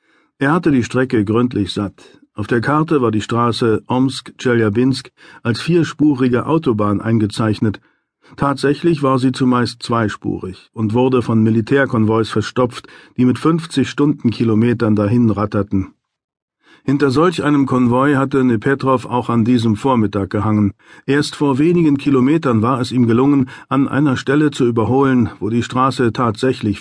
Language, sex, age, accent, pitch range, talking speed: German, male, 50-69, German, 110-140 Hz, 135 wpm